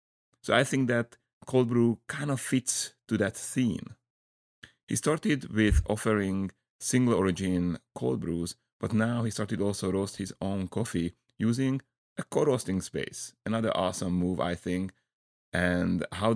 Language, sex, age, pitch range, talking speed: English, male, 30-49, 90-120 Hz, 145 wpm